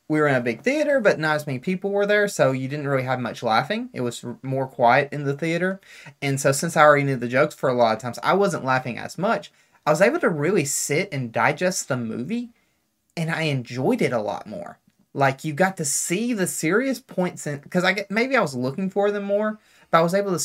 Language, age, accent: English, 20-39, American